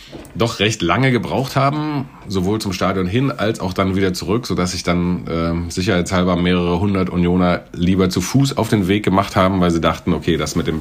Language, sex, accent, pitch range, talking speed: German, male, German, 85-100 Hz, 205 wpm